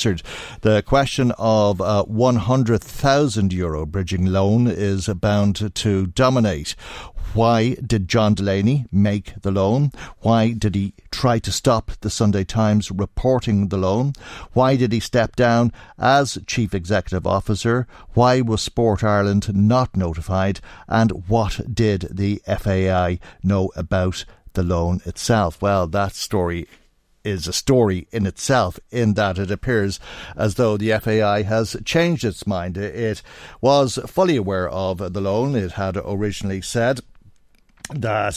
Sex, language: male, English